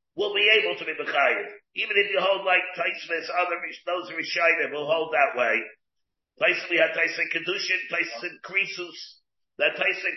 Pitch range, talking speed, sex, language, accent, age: 165-220 Hz, 165 wpm, male, English, American, 50-69